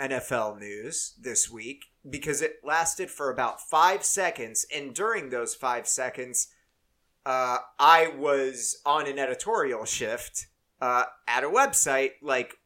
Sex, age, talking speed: male, 30-49, 135 wpm